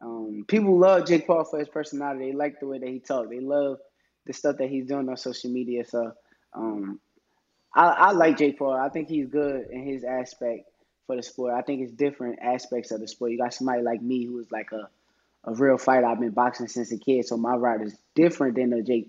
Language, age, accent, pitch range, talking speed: English, 20-39, American, 120-155 Hz, 240 wpm